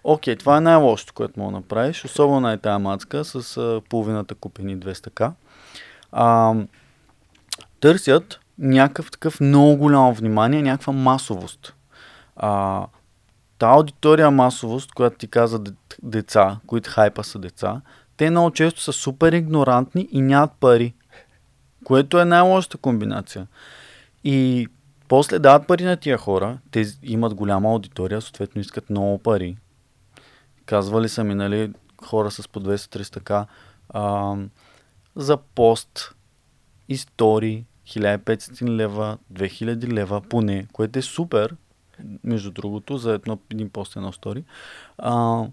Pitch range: 105-140 Hz